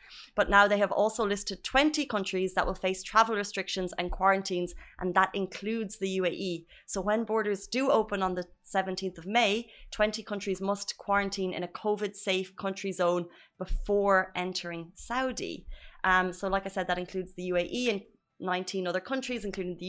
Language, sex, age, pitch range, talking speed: Arabic, female, 20-39, 175-200 Hz, 175 wpm